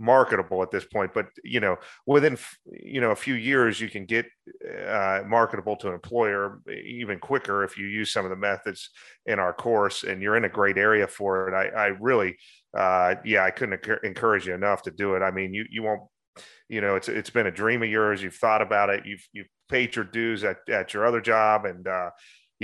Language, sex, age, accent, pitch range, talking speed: English, male, 30-49, American, 100-115 Hz, 225 wpm